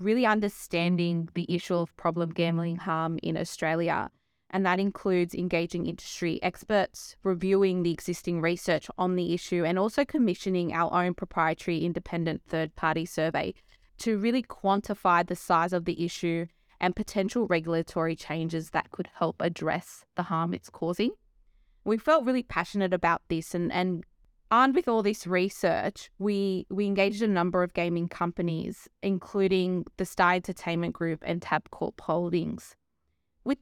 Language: English